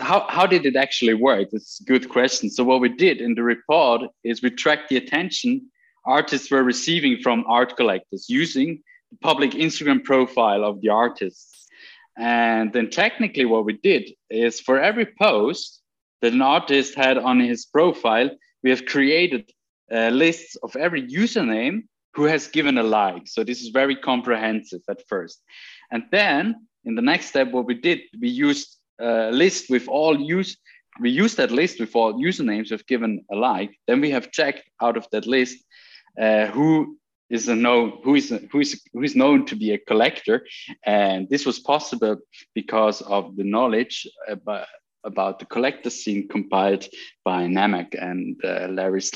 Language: English